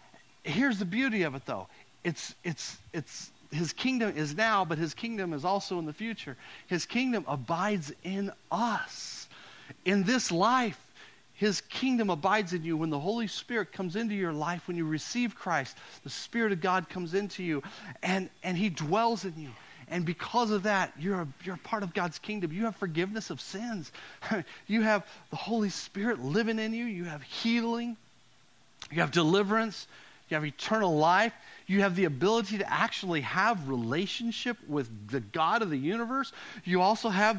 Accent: American